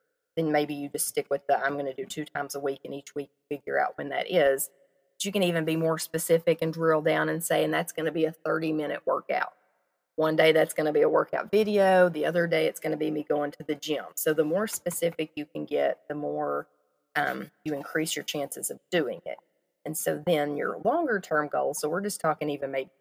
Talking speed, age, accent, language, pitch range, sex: 250 wpm, 30-49, American, English, 145-180 Hz, female